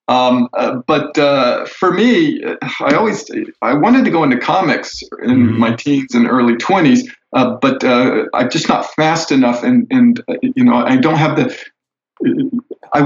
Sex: male